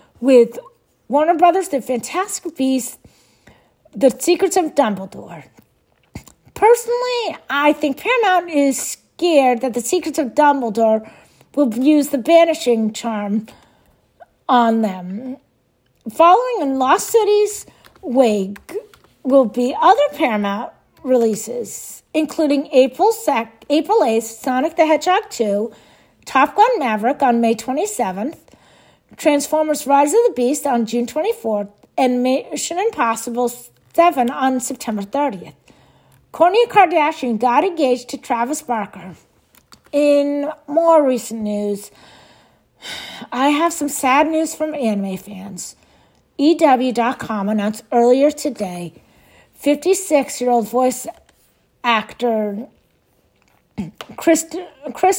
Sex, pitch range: female, 230-315 Hz